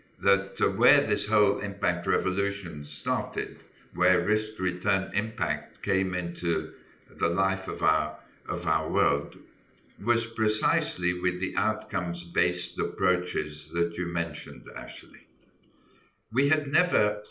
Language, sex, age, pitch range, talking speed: English, male, 60-79, 85-105 Hz, 110 wpm